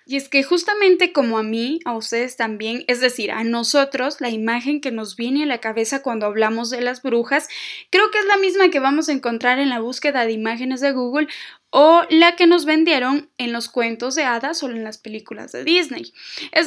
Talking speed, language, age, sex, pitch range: 215 wpm, Spanish, 10-29, female, 230-295 Hz